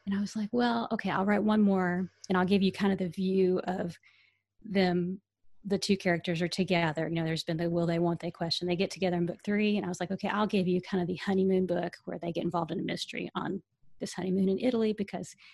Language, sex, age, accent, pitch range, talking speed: English, female, 30-49, American, 175-205 Hz, 260 wpm